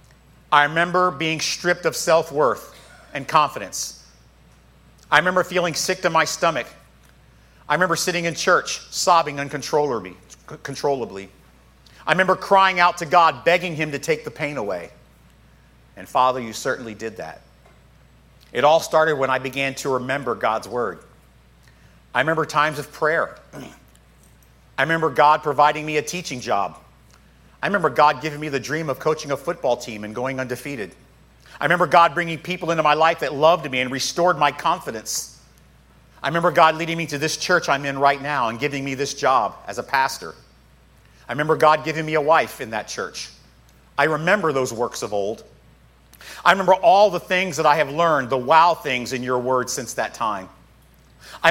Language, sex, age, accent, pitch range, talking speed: English, male, 40-59, American, 130-170 Hz, 175 wpm